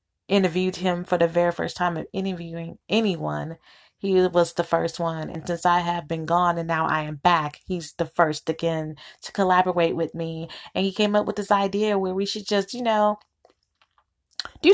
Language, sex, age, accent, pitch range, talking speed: English, female, 20-39, American, 170-205 Hz, 195 wpm